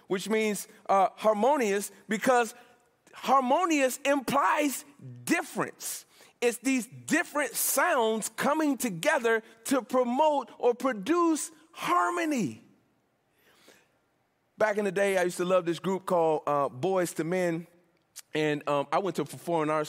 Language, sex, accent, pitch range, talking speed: English, male, American, 170-255 Hz, 125 wpm